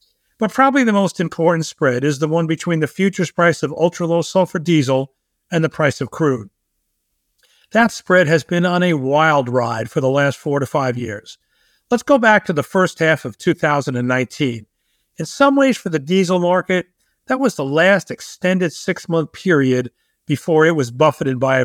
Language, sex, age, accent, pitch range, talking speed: English, male, 50-69, American, 145-185 Hz, 185 wpm